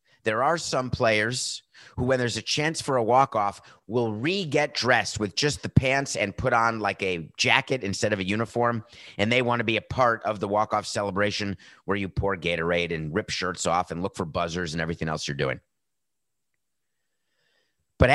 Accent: American